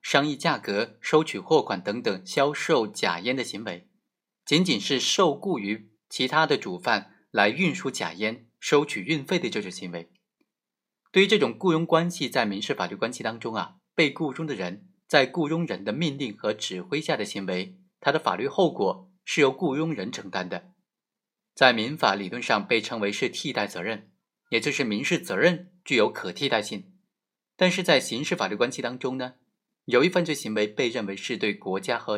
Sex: male